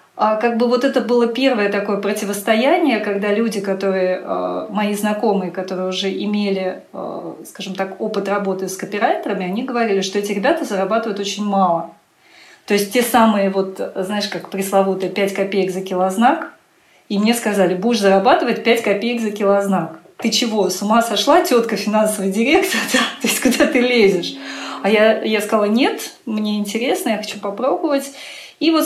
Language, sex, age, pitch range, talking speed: Russian, female, 30-49, 195-240 Hz, 160 wpm